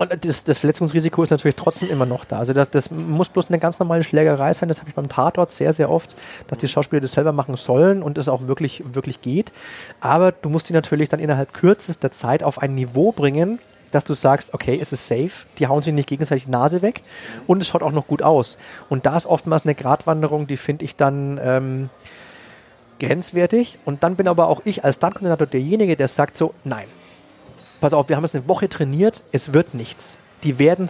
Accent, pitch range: German, 140-175 Hz